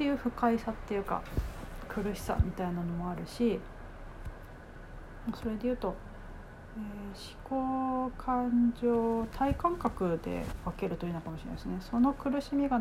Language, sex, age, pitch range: Japanese, female, 40-59, 170-230 Hz